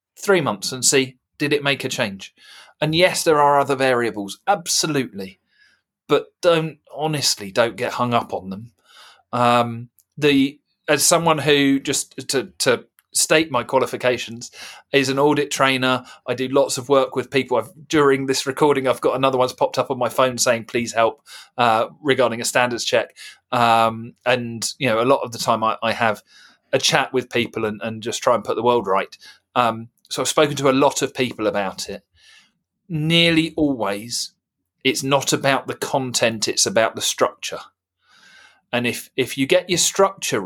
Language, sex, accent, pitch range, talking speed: English, male, British, 120-155 Hz, 180 wpm